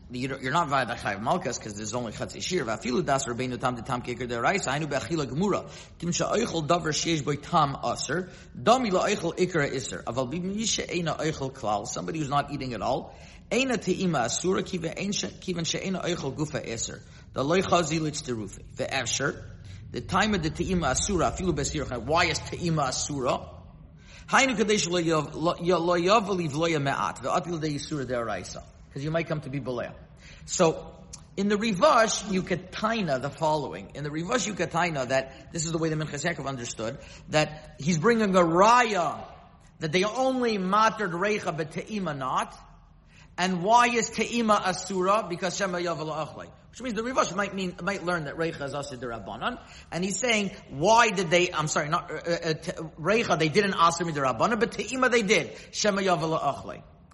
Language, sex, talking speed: English, male, 135 wpm